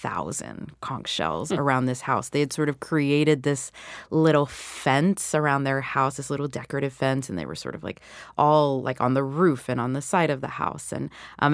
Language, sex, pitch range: English, female, 130-155 Hz